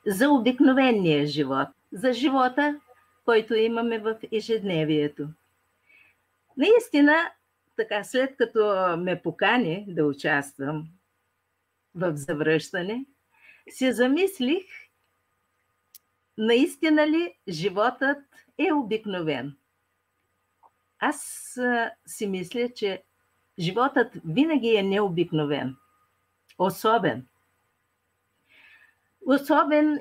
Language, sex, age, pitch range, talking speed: Bulgarian, female, 50-69, 175-260 Hz, 70 wpm